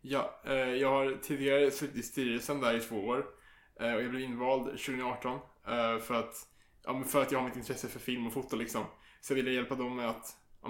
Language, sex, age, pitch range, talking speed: Swedish, male, 20-39, 125-140 Hz, 215 wpm